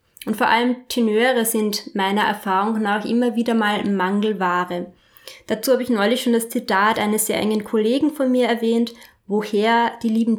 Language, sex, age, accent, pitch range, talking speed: German, female, 20-39, German, 215-260 Hz, 170 wpm